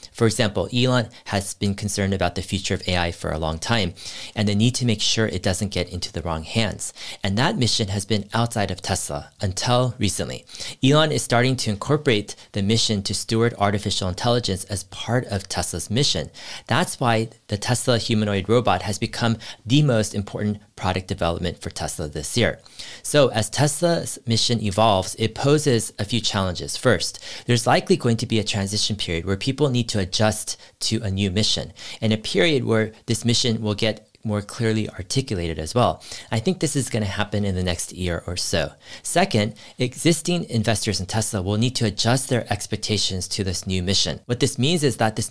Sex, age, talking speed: male, 40-59, 190 wpm